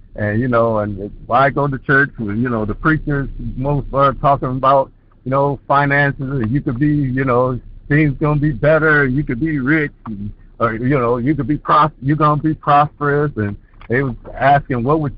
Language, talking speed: English, 205 wpm